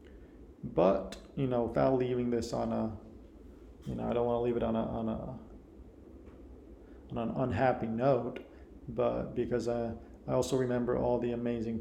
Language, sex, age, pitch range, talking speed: English, male, 40-59, 115-135 Hz, 170 wpm